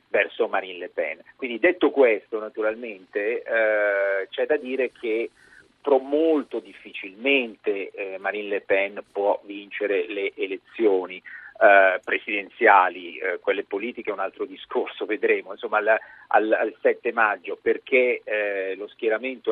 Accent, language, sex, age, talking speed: native, Italian, male, 50-69, 135 wpm